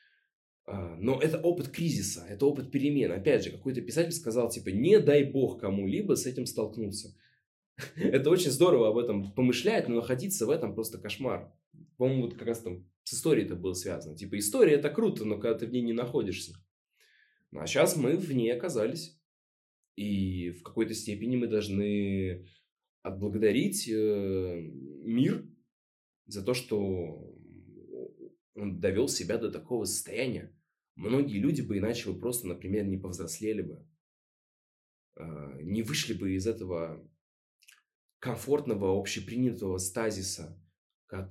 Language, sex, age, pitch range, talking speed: Russian, male, 20-39, 95-125 Hz, 140 wpm